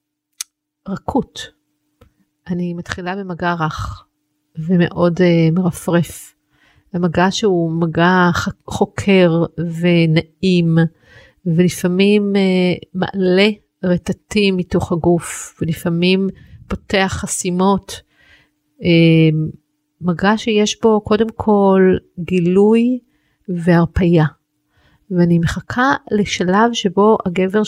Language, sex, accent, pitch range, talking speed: Hebrew, female, Italian, 170-200 Hz, 75 wpm